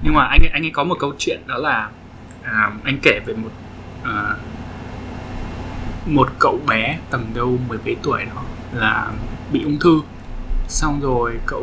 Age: 20-39